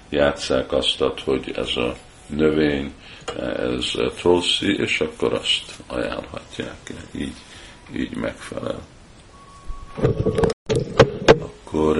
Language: Hungarian